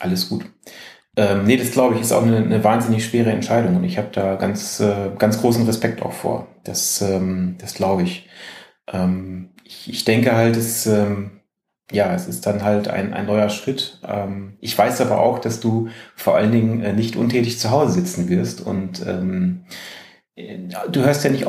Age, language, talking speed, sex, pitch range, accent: 30-49, German, 190 wpm, male, 100-120 Hz, German